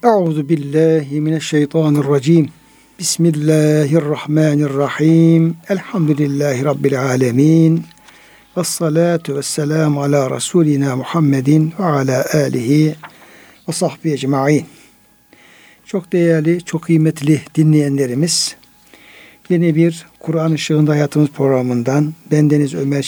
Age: 60-79